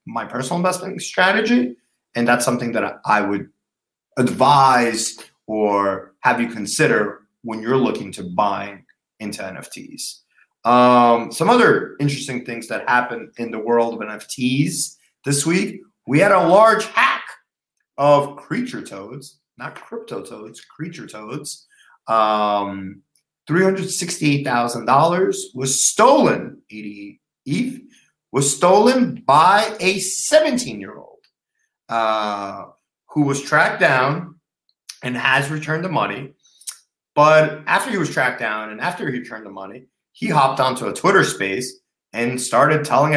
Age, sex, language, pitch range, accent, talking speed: 30-49, male, English, 115-165 Hz, American, 125 wpm